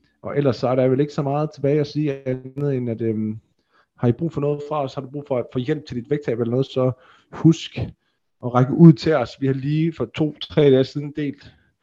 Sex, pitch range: male, 115-140 Hz